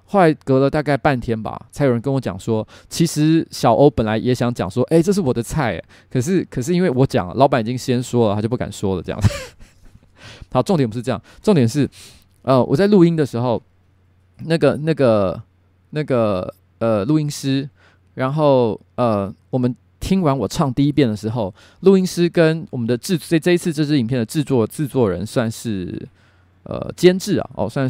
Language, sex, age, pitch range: Chinese, male, 20-39, 105-155 Hz